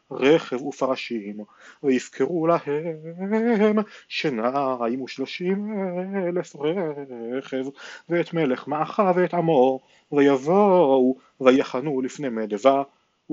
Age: 30-49